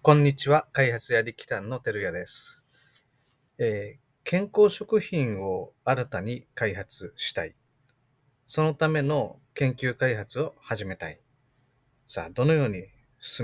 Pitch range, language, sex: 125-175 Hz, Japanese, male